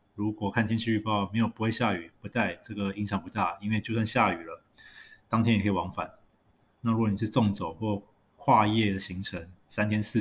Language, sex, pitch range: Chinese, male, 100-115 Hz